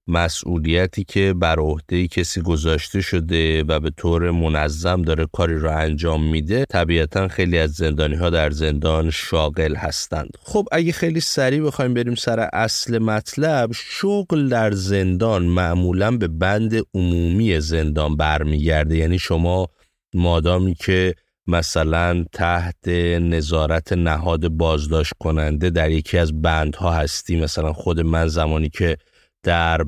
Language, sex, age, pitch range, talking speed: Persian, male, 30-49, 80-100 Hz, 130 wpm